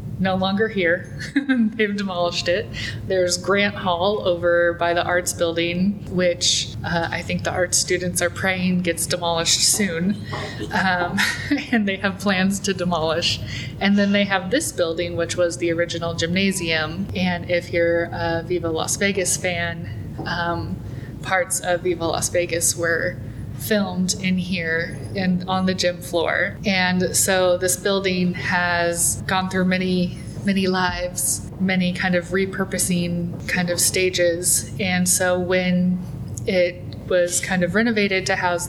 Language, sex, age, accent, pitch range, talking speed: English, female, 20-39, American, 170-190 Hz, 145 wpm